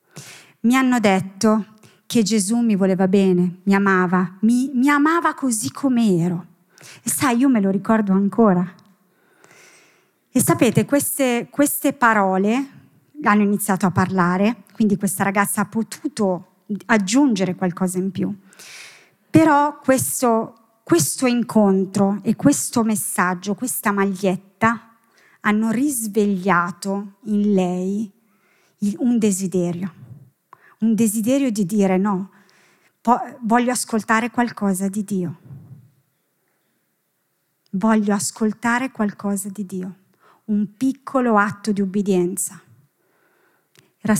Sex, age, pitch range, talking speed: female, 30-49, 190-225 Hz, 105 wpm